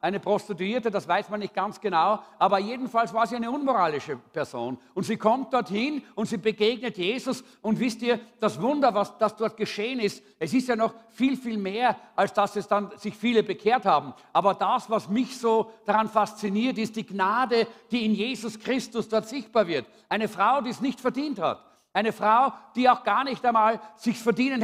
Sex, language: male, English